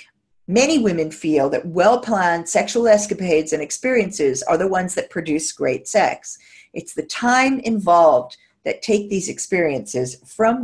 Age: 50-69